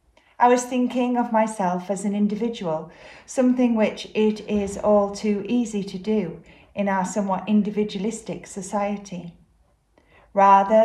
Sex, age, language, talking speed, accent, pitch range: female, 40-59, English, 125 wpm, British, 180-220 Hz